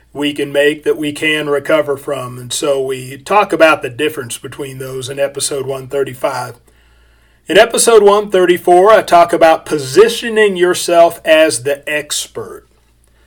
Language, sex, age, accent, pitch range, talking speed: English, male, 40-59, American, 145-175 Hz, 140 wpm